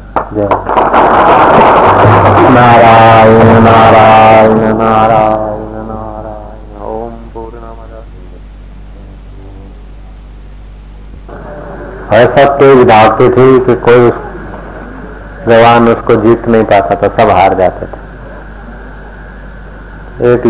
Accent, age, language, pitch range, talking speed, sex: native, 50-69, Hindi, 110-120 Hz, 65 wpm, male